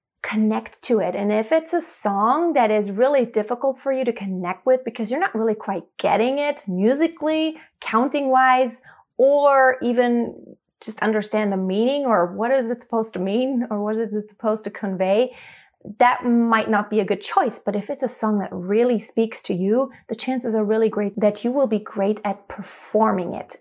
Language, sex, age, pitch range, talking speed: English, female, 30-49, 210-255 Hz, 195 wpm